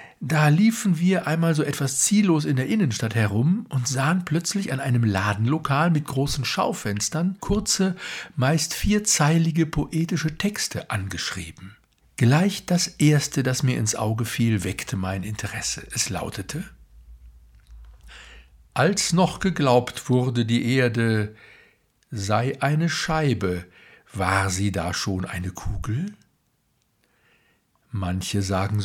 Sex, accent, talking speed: male, German, 115 wpm